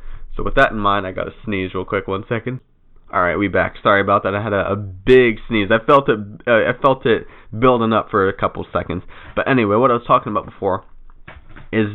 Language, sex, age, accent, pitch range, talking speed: English, male, 20-39, American, 100-120 Hz, 240 wpm